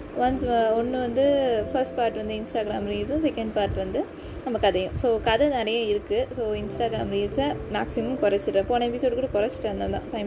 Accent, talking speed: native, 175 wpm